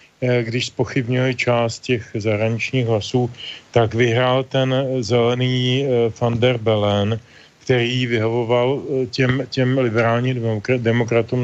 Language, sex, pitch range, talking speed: Slovak, male, 115-130 Hz, 105 wpm